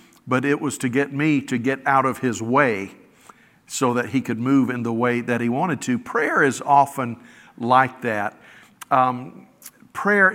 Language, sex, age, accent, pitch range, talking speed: English, male, 50-69, American, 130-160 Hz, 180 wpm